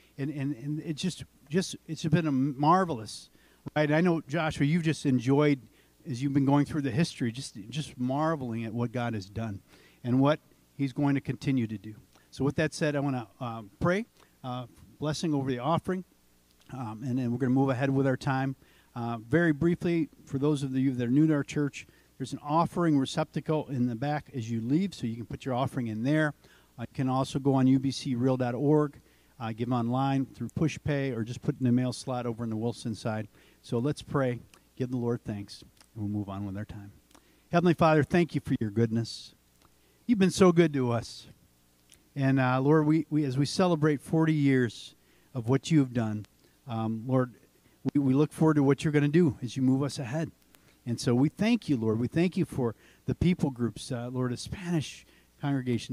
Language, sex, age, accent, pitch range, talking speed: English, male, 50-69, American, 120-150 Hz, 210 wpm